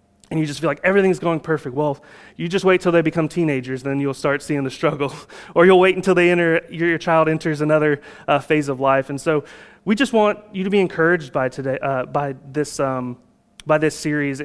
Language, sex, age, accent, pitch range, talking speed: English, male, 30-49, American, 145-180 Hz, 225 wpm